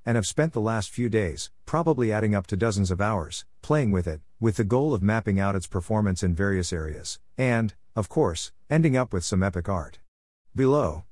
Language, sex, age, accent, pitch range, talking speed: English, male, 50-69, American, 90-115 Hz, 205 wpm